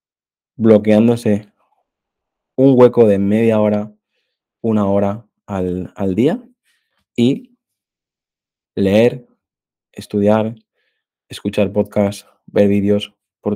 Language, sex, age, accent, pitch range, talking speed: Spanish, male, 20-39, Spanish, 100-115 Hz, 85 wpm